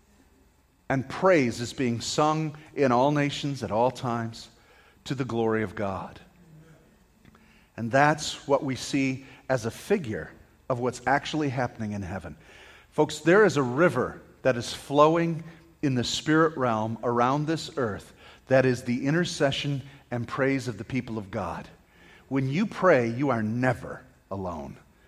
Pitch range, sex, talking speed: 130-195 Hz, male, 150 wpm